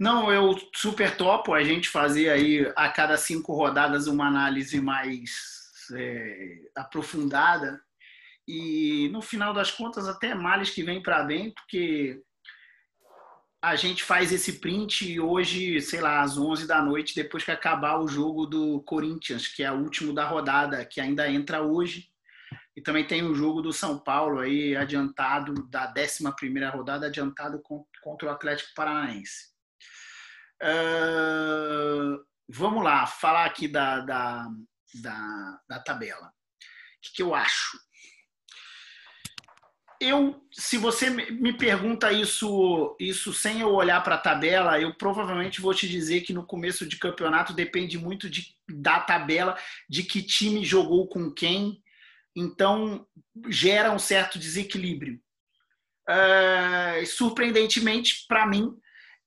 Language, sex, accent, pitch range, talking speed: Portuguese, male, Brazilian, 150-200 Hz, 130 wpm